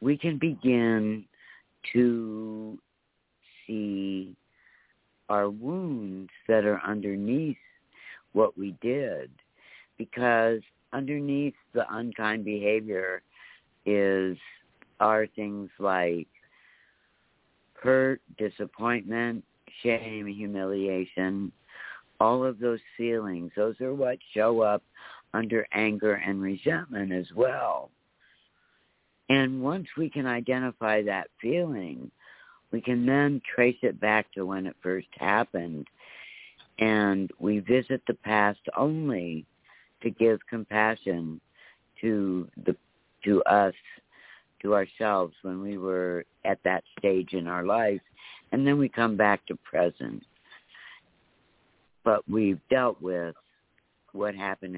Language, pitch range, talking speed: English, 95-120 Hz, 105 wpm